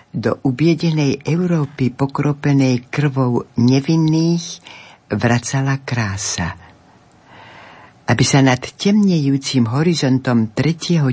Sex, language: female, Slovak